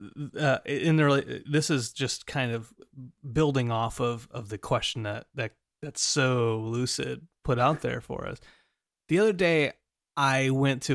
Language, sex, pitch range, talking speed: English, male, 115-150 Hz, 165 wpm